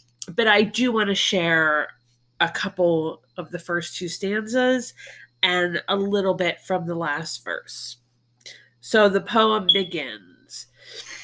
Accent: American